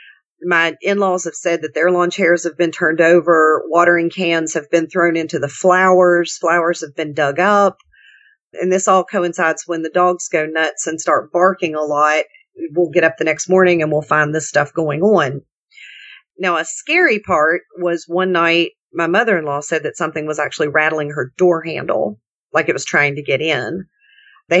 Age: 40-59